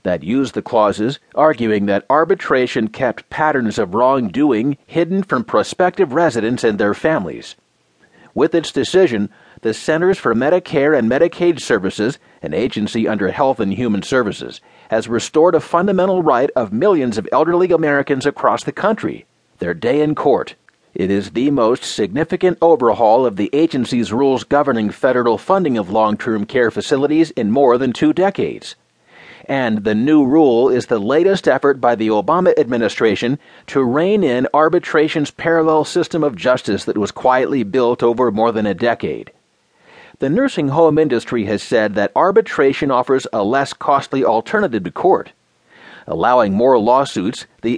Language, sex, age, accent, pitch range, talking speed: English, male, 40-59, American, 120-175 Hz, 155 wpm